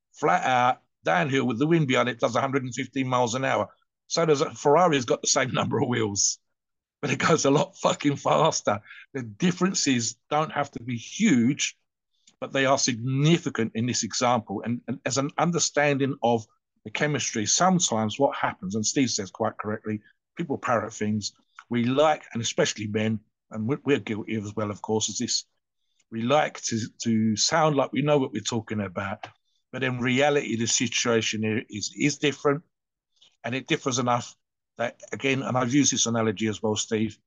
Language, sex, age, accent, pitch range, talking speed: English, male, 50-69, British, 115-145 Hz, 180 wpm